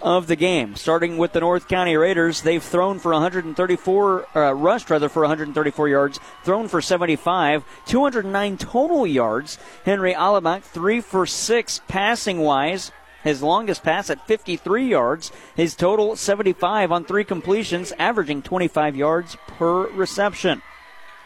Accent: American